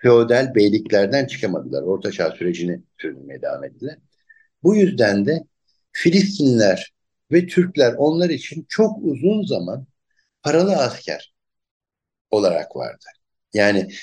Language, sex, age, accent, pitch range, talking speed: Turkish, male, 60-79, native, 120-180 Hz, 105 wpm